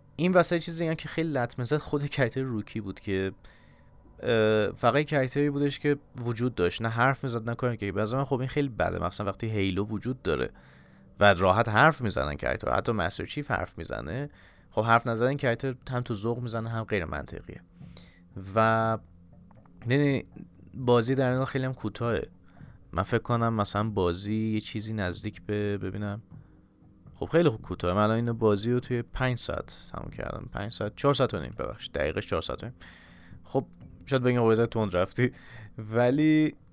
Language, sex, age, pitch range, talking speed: Persian, male, 30-49, 95-125 Hz, 165 wpm